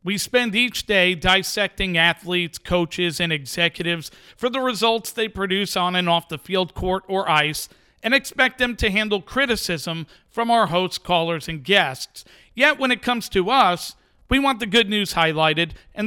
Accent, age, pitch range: American, 50-69, 165-215 Hz